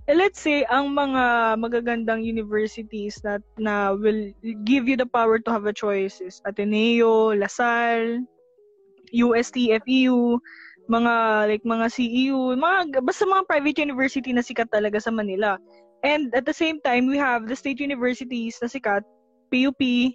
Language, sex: Filipino, female